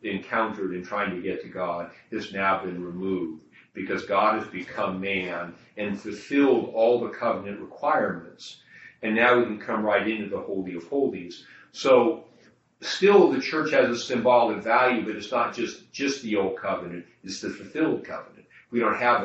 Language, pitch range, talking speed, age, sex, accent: English, 95-115 Hz, 175 wpm, 40-59, male, American